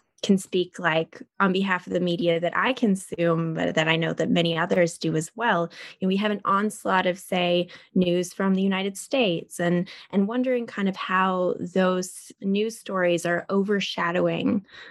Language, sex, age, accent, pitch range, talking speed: English, female, 20-39, American, 175-205 Hz, 175 wpm